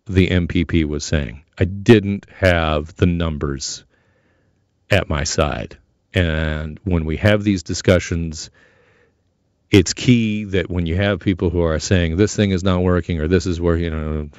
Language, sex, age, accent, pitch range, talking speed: English, male, 50-69, American, 85-100 Hz, 165 wpm